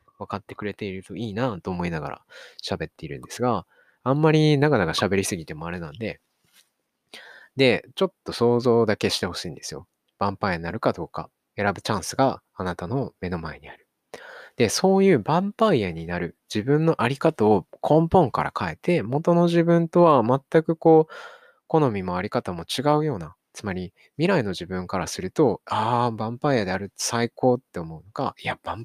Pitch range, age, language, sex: 100-155 Hz, 20-39, Japanese, male